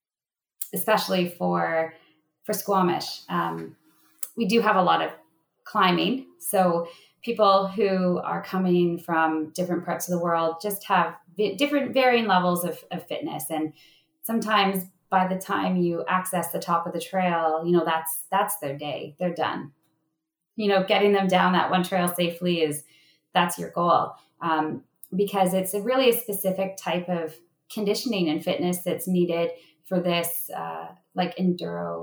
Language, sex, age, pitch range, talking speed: English, female, 20-39, 160-195 Hz, 155 wpm